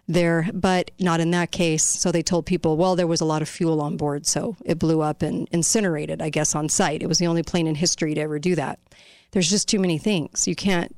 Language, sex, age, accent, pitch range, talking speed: English, female, 40-59, American, 155-180 Hz, 255 wpm